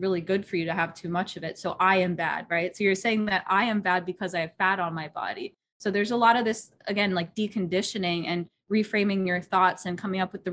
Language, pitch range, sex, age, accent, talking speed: English, 180-215 Hz, female, 20-39, American, 270 wpm